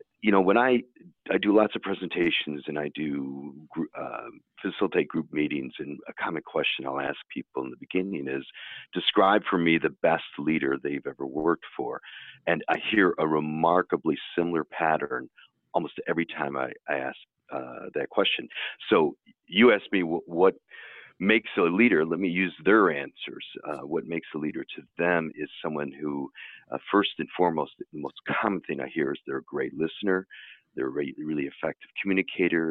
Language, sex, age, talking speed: English, male, 50-69, 180 wpm